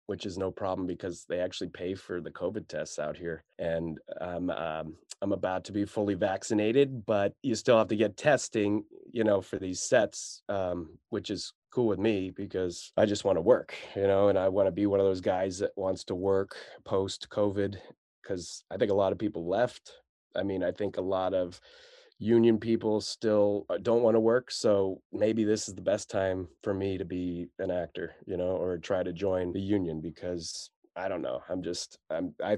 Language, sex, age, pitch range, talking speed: English, male, 20-39, 95-110 Hz, 210 wpm